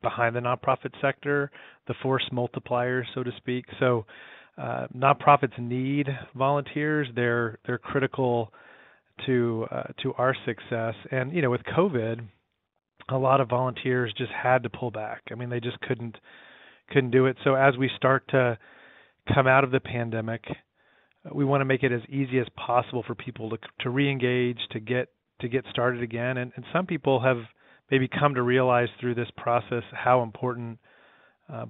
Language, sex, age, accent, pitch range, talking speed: English, male, 30-49, American, 120-135 Hz, 170 wpm